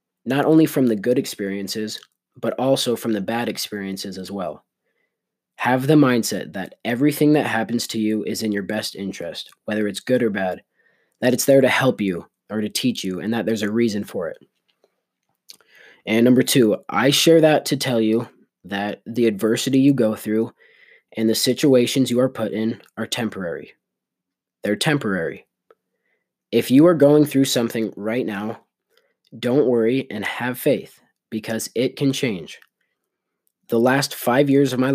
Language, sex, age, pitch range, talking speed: English, male, 20-39, 105-130 Hz, 170 wpm